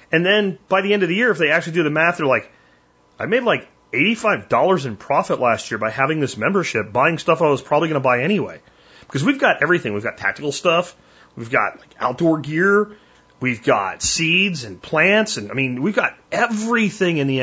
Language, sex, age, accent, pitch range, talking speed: German, male, 30-49, American, 125-180 Hz, 215 wpm